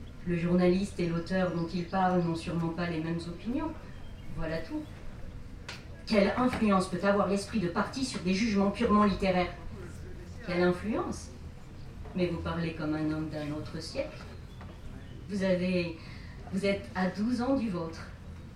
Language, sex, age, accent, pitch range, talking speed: French, female, 40-59, French, 165-205 Hz, 150 wpm